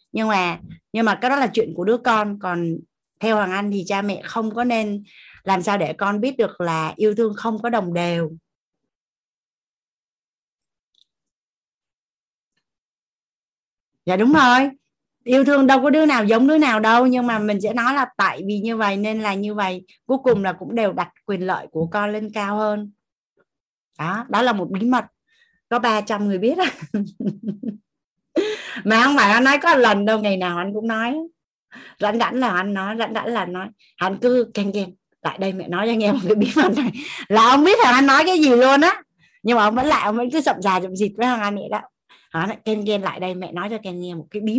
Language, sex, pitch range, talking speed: Vietnamese, female, 190-240 Hz, 215 wpm